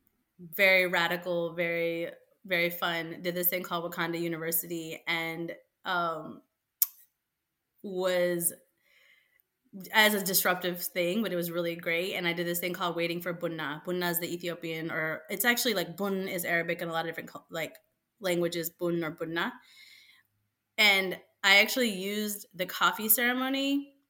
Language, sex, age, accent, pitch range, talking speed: English, female, 20-39, American, 175-200 Hz, 150 wpm